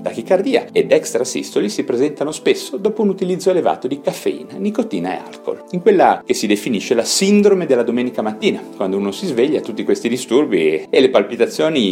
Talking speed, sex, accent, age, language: 180 wpm, male, native, 40-59, Italian